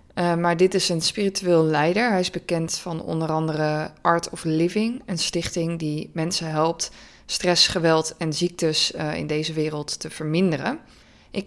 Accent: Dutch